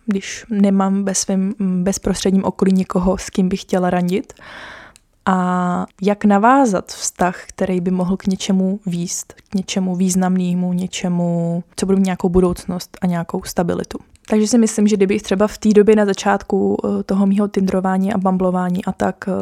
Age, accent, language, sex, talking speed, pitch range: 20-39, native, Czech, female, 160 wpm, 185-205 Hz